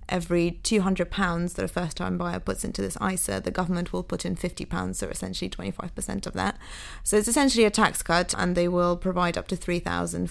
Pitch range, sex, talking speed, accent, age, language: 180-210 Hz, female, 200 wpm, British, 20-39, English